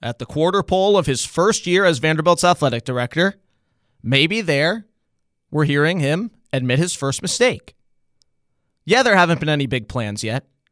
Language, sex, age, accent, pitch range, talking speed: English, male, 30-49, American, 125-175 Hz, 160 wpm